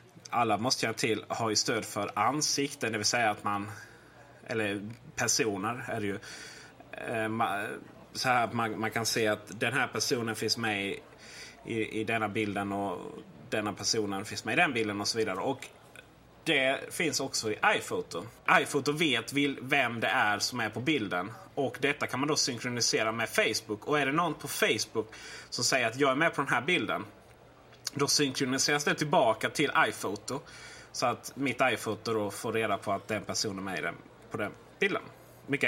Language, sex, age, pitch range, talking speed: Swedish, male, 30-49, 110-145 Hz, 180 wpm